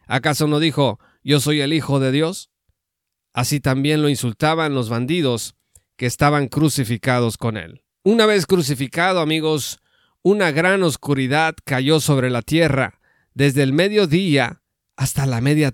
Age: 40-59